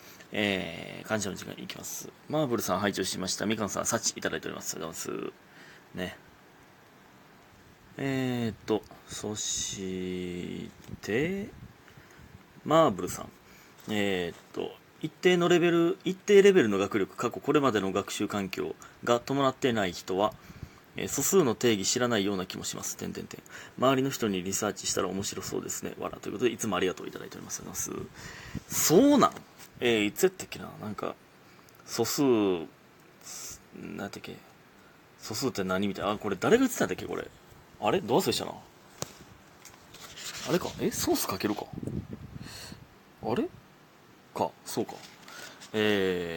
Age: 30-49